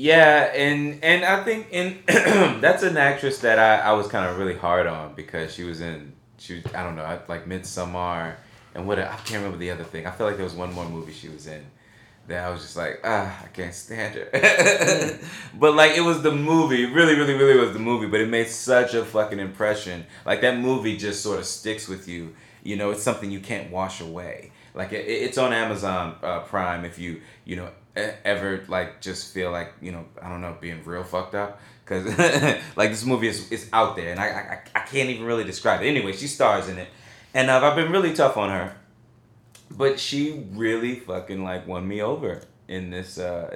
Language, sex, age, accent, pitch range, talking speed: English, male, 20-39, American, 90-125 Hz, 220 wpm